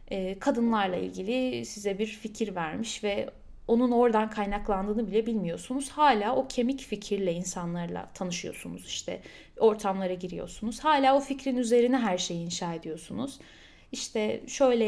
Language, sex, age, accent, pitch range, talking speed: Turkish, female, 10-29, native, 195-235 Hz, 125 wpm